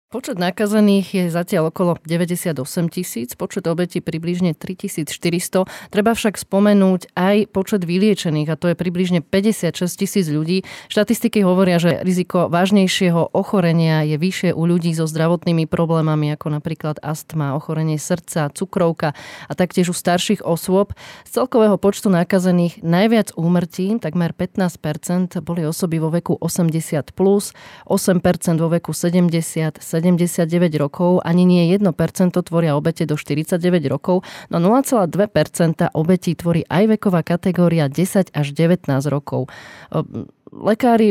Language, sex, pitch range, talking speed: Slovak, female, 160-185 Hz, 130 wpm